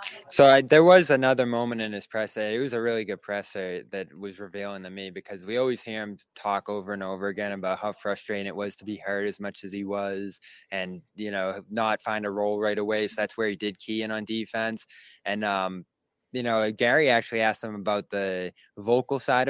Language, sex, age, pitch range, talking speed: English, male, 20-39, 100-120 Hz, 225 wpm